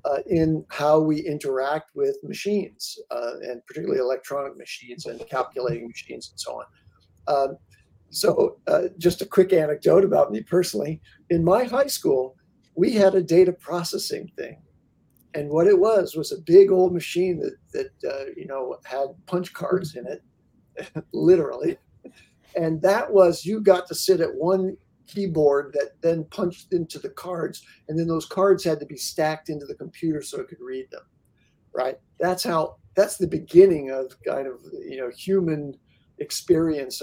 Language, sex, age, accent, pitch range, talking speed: English, male, 50-69, American, 145-235 Hz, 165 wpm